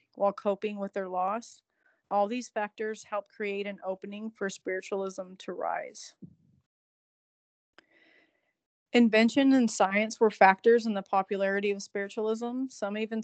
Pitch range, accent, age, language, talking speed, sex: 195-220 Hz, American, 30-49, English, 125 wpm, female